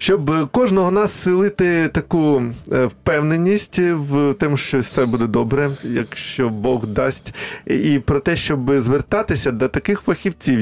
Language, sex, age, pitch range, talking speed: Ukrainian, male, 20-39, 120-150 Hz, 130 wpm